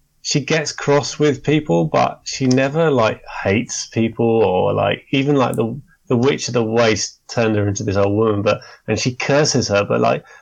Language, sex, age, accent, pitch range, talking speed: English, male, 30-49, British, 105-135 Hz, 195 wpm